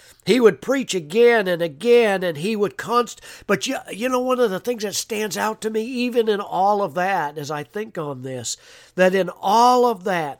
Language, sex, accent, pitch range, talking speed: English, male, American, 140-190 Hz, 220 wpm